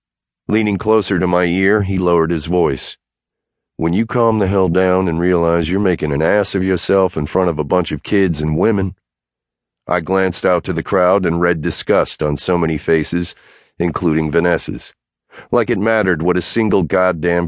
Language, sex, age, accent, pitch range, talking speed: English, male, 40-59, American, 80-95 Hz, 185 wpm